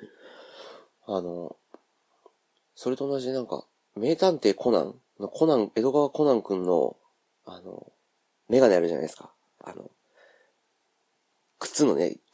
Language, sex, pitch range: Japanese, male, 100-160 Hz